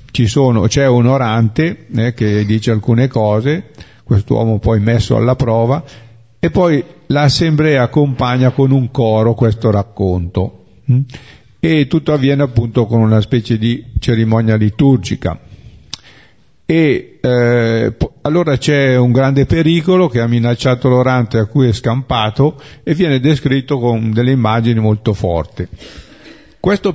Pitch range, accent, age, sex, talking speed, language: 115-140 Hz, native, 50-69, male, 125 wpm, Italian